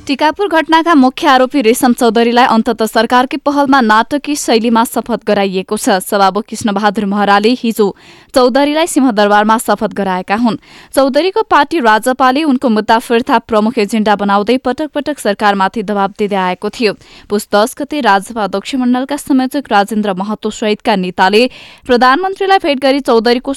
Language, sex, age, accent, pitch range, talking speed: English, female, 20-39, Indian, 210-255 Hz, 120 wpm